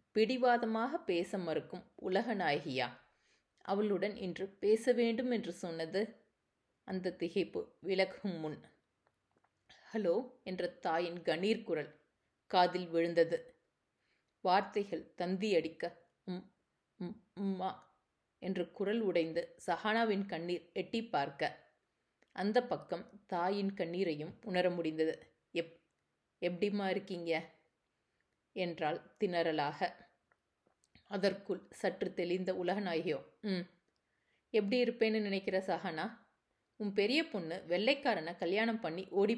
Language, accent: Tamil, native